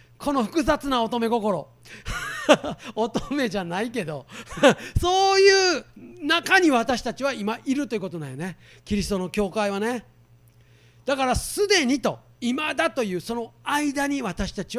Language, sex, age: Japanese, male, 40-59